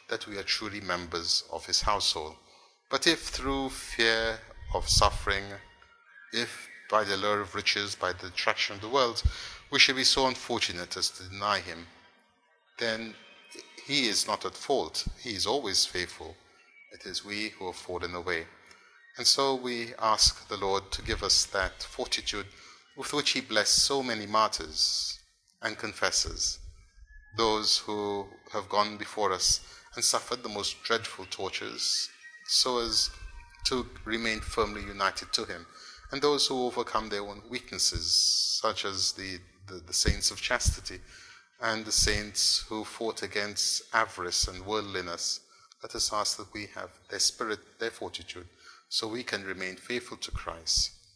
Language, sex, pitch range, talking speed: English, male, 90-115 Hz, 155 wpm